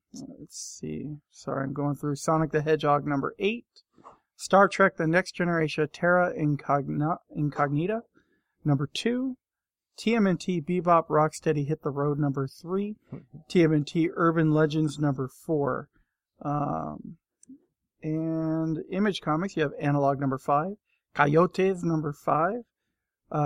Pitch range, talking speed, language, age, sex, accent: 150-185 Hz, 115 wpm, English, 40-59, male, American